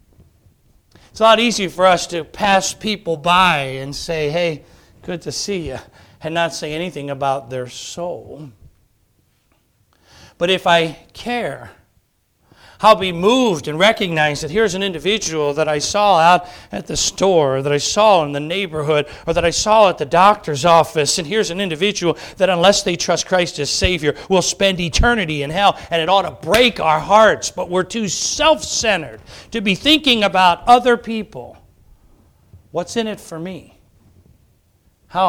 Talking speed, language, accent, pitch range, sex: 165 wpm, English, American, 130-195 Hz, male